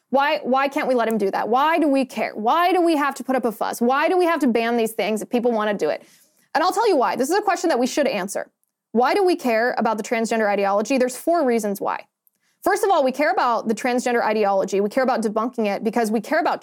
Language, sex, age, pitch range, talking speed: English, female, 20-39, 225-285 Hz, 280 wpm